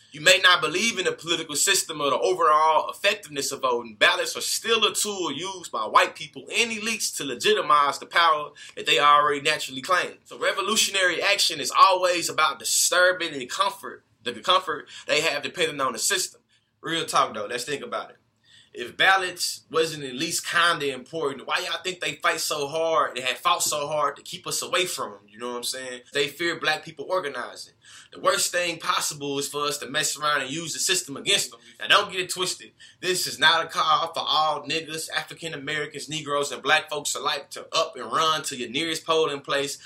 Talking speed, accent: 210 wpm, American